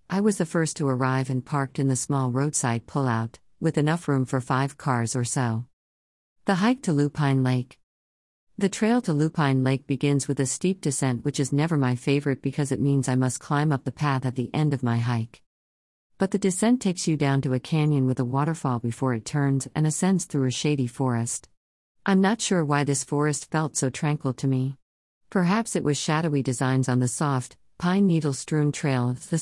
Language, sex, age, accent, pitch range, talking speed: English, female, 50-69, American, 125-160 Hz, 210 wpm